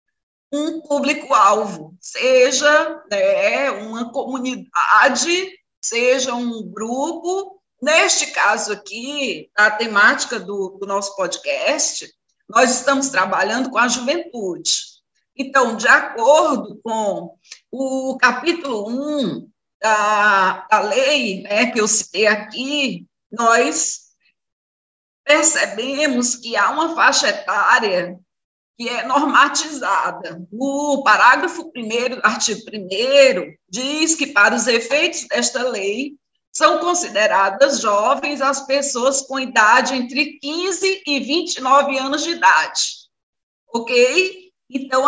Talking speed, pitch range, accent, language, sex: 105 wpm, 225-305 Hz, Brazilian, English, female